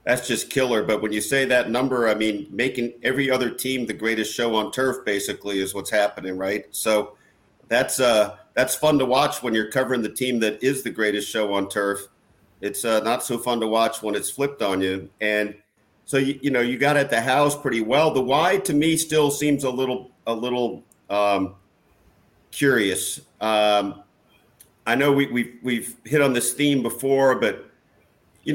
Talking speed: 195 wpm